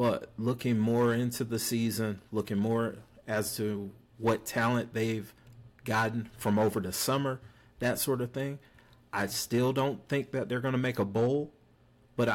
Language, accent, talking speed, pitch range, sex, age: English, American, 160 wpm, 110-125 Hz, male, 40-59